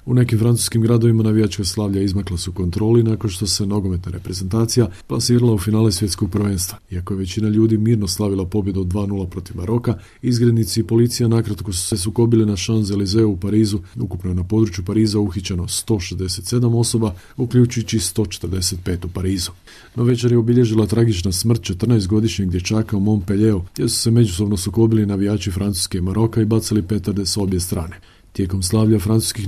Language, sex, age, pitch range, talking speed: Croatian, male, 40-59, 95-115 Hz, 165 wpm